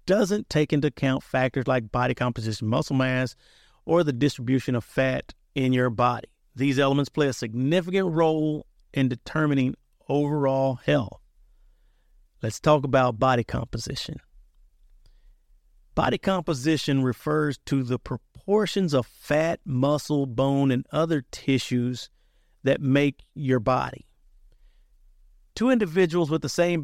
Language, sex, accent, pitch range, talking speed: English, male, American, 125-155 Hz, 125 wpm